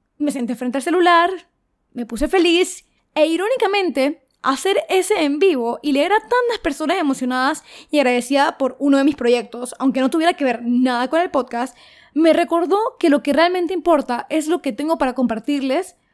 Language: Spanish